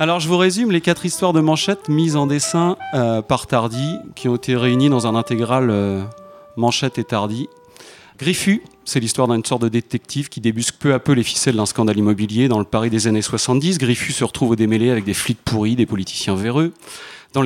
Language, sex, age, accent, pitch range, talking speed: French, male, 30-49, French, 115-150 Hz, 215 wpm